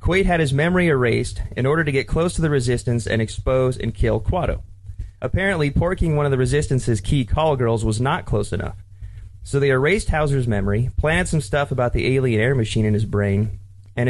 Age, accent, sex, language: 30-49, American, male, English